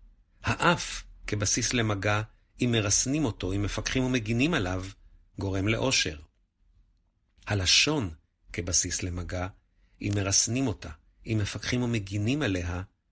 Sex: male